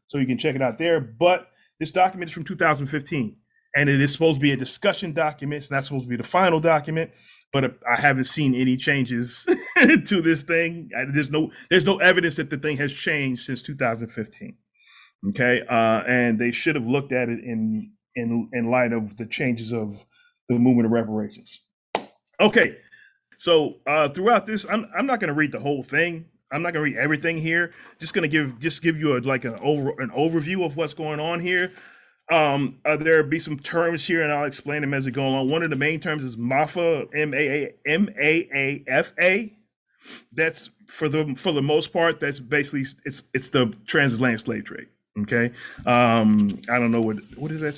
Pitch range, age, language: 125-165 Hz, 30-49, English